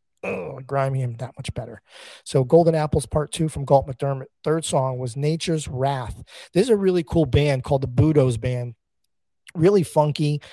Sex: male